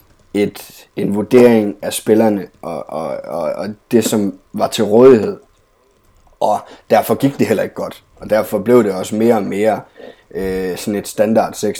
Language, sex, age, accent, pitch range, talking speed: Danish, male, 20-39, native, 100-115 Hz, 170 wpm